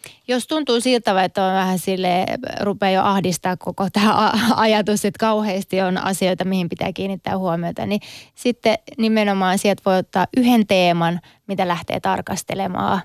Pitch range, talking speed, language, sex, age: 180-215 Hz, 145 wpm, Finnish, female, 20-39